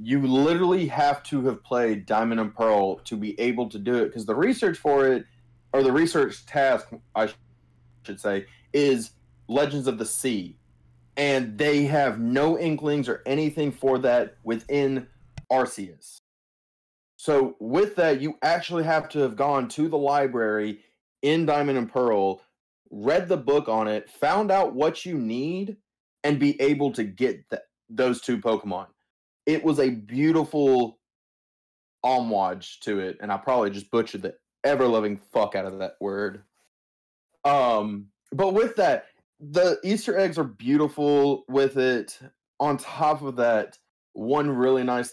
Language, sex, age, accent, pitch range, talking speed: English, male, 30-49, American, 110-145 Hz, 150 wpm